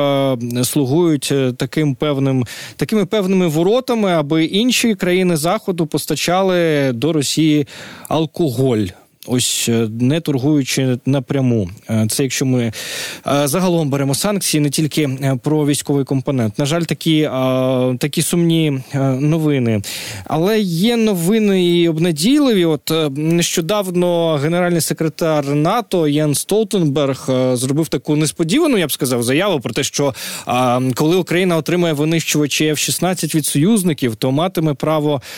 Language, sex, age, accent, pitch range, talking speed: Ukrainian, male, 20-39, native, 140-175 Hz, 115 wpm